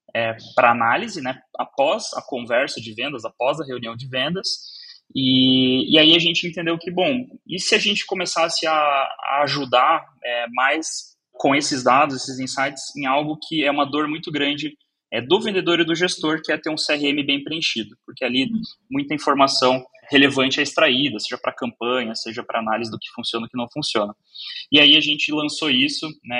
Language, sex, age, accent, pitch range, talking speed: Portuguese, male, 20-39, Brazilian, 120-160 Hz, 195 wpm